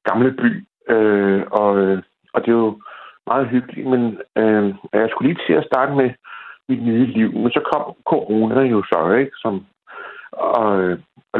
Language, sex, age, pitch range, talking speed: Danish, male, 60-79, 110-130 Hz, 170 wpm